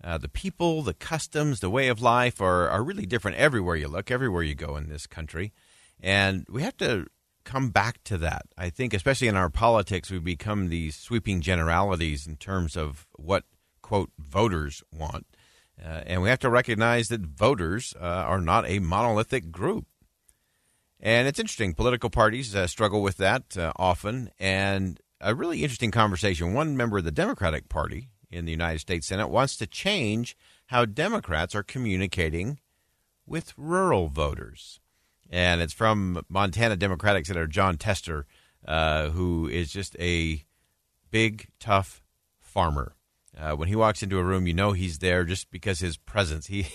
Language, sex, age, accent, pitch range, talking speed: English, male, 50-69, American, 85-115 Hz, 165 wpm